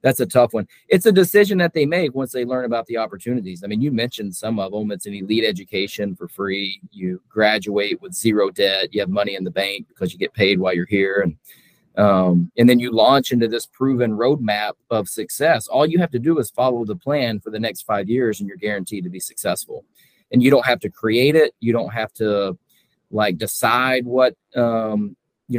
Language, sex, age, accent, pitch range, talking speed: English, male, 30-49, American, 105-130 Hz, 225 wpm